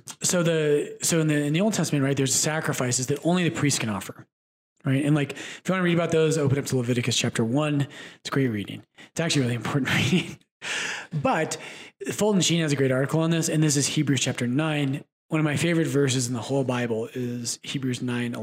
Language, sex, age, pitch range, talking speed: English, male, 30-49, 130-160 Hz, 230 wpm